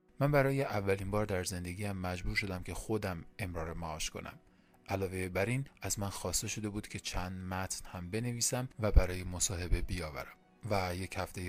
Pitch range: 90-110 Hz